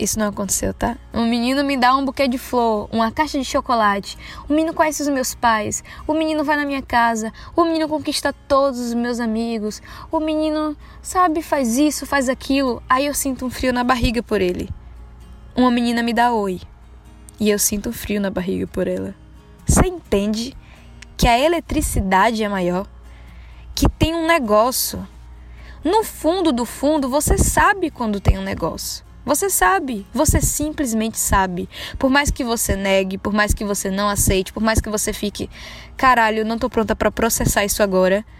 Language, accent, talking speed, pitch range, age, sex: Portuguese, Brazilian, 180 wpm, 205-290 Hz, 10-29, female